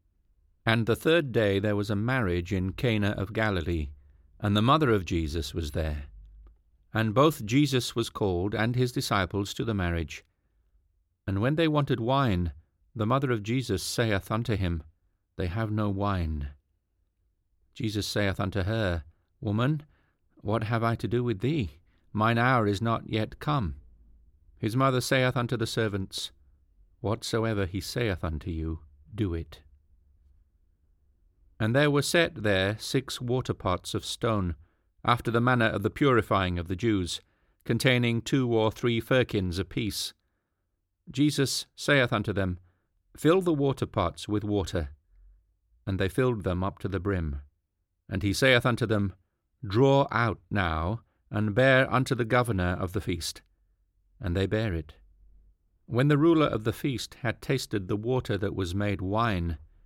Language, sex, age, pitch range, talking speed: English, male, 40-59, 85-115 Hz, 150 wpm